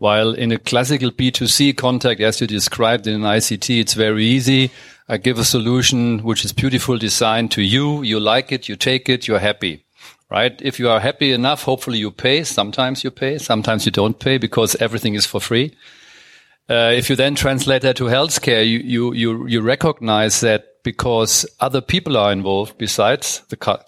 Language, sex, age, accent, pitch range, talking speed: English, male, 50-69, German, 110-130 Hz, 190 wpm